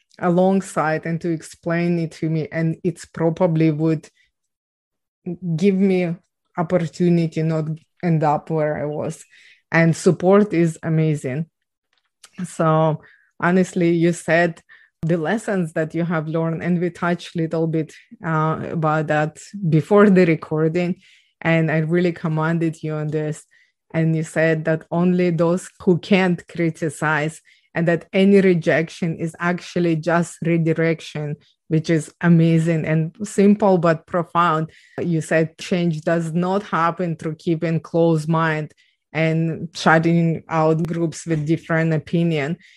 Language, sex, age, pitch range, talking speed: English, female, 20-39, 160-175 Hz, 130 wpm